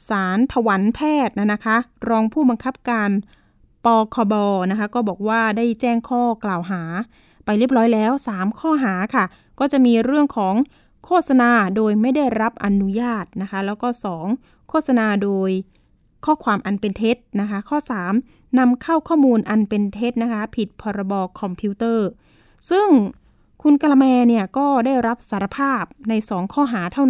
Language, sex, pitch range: Thai, female, 210-270 Hz